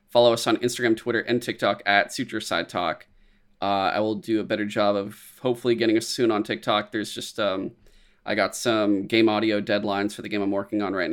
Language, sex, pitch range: English, male, 100-115 Hz